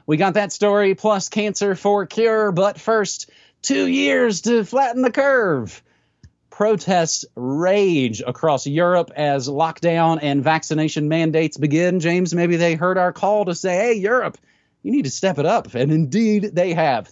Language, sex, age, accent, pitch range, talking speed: English, male, 30-49, American, 140-185 Hz, 160 wpm